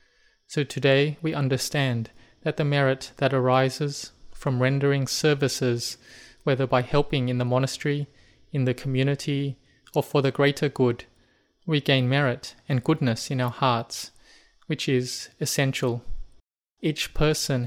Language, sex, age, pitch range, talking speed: English, male, 20-39, 125-145 Hz, 130 wpm